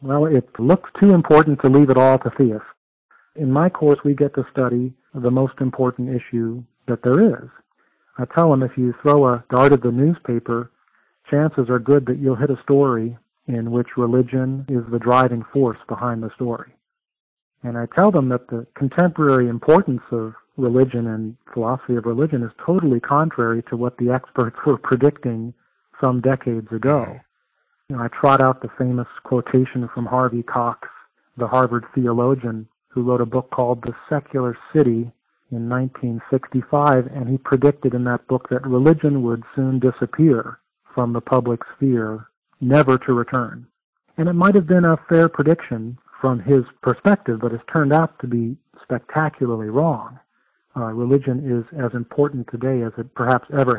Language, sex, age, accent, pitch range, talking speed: English, male, 50-69, American, 120-140 Hz, 165 wpm